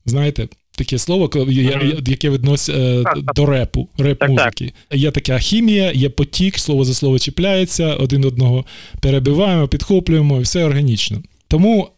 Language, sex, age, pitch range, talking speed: Ukrainian, male, 20-39, 120-155 Hz, 120 wpm